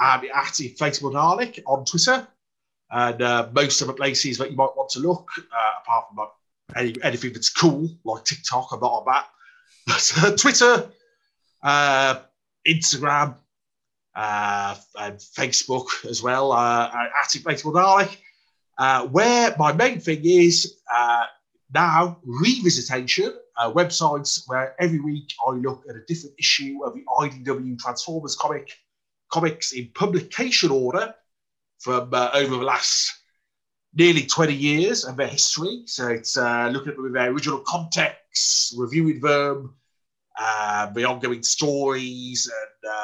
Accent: British